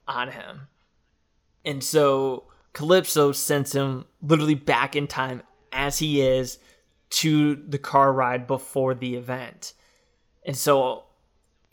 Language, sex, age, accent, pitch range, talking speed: English, male, 20-39, American, 130-150 Hz, 120 wpm